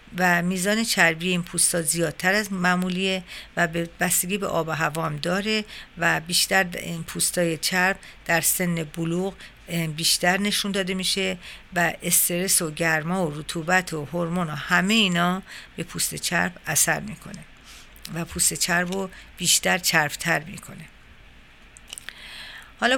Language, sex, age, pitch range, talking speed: Persian, female, 50-69, 165-190 Hz, 135 wpm